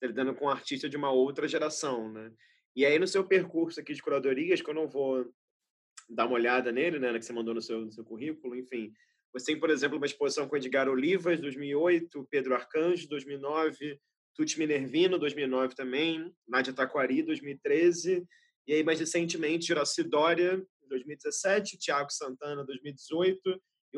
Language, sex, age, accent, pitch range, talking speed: Portuguese, male, 20-39, Brazilian, 140-180 Hz, 165 wpm